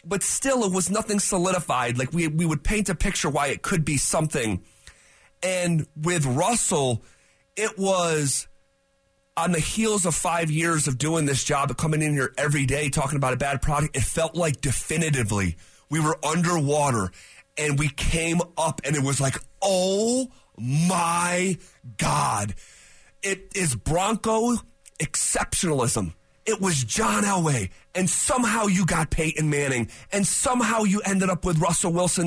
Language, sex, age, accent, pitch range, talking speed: English, male, 30-49, American, 130-175 Hz, 155 wpm